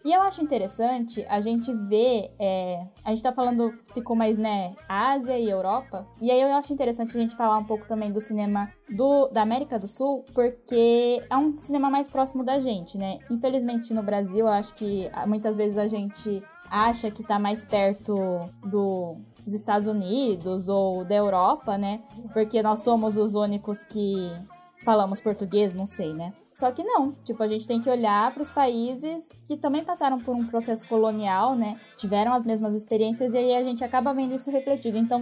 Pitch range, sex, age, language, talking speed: 205-250 Hz, female, 10-29, Portuguese, 185 wpm